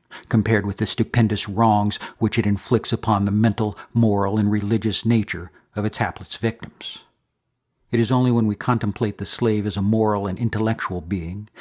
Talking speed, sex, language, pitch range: 170 wpm, male, English, 105-120 Hz